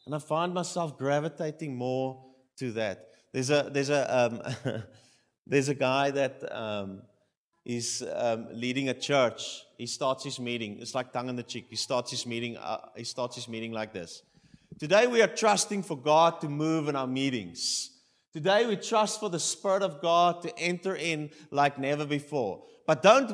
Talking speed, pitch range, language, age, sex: 175 wpm, 120-165 Hz, English, 30-49, male